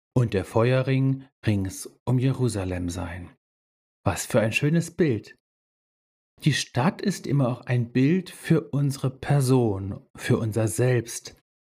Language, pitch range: German, 105-155 Hz